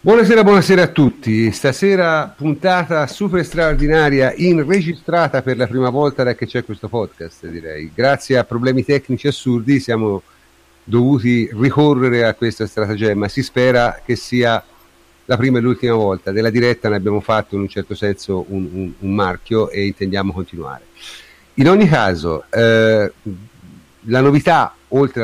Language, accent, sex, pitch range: Italian, native, male, 105-135 Hz